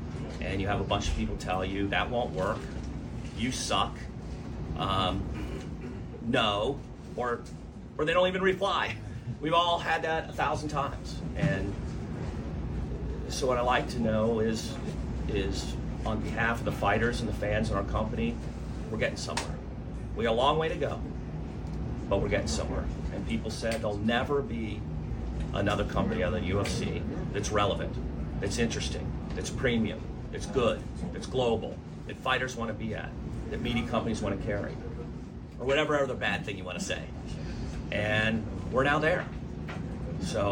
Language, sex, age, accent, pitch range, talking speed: English, male, 40-59, American, 80-115 Hz, 165 wpm